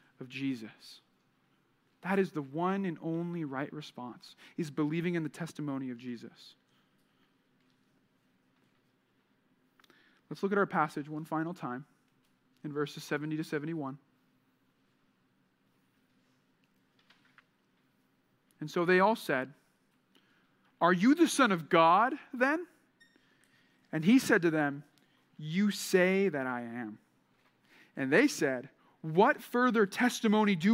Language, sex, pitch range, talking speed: English, male, 150-215 Hz, 115 wpm